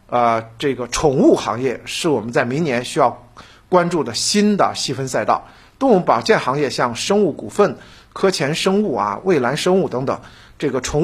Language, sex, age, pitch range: Chinese, male, 50-69, 120-190 Hz